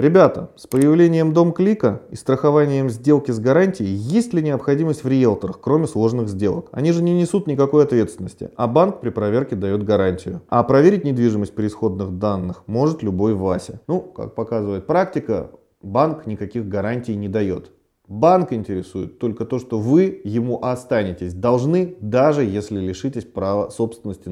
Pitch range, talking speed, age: 100-140 Hz, 155 wpm, 30-49